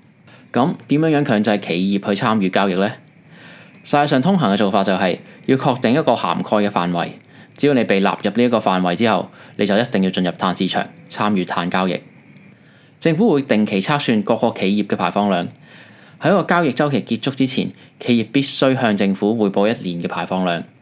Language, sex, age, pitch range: Chinese, male, 20-39, 100-140 Hz